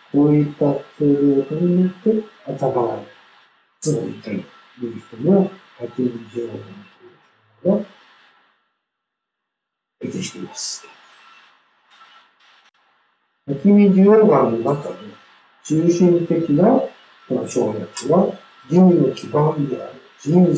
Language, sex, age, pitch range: Japanese, male, 60-79, 130-175 Hz